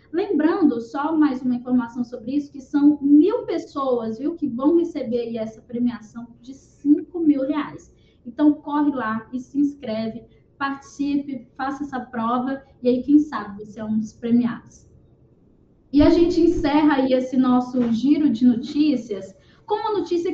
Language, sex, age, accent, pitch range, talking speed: Portuguese, female, 10-29, Brazilian, 250-315 Hz, 160 wpm